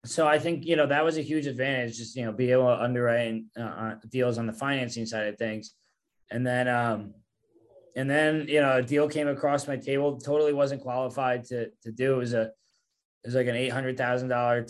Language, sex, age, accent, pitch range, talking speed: English, male, 20-39, American, 120-140 Hz, 210 wpm